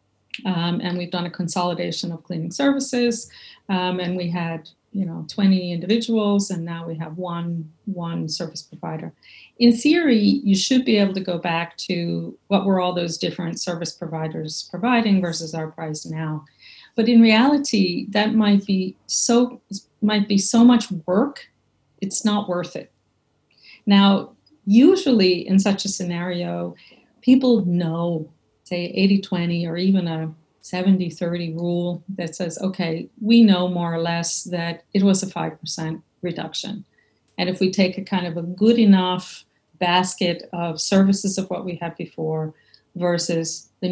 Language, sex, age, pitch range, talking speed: English, female, 40-59, 170-200 Hz, 155 wpm